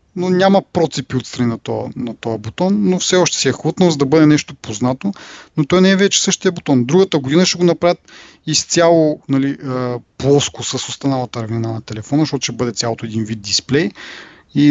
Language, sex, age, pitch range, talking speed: Bulgarian, male, 30-49, 125-155 Hz, 190 wpm